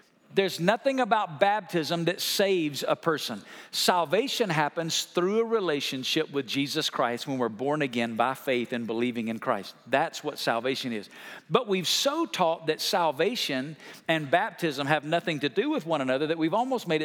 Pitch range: 140-200 Hz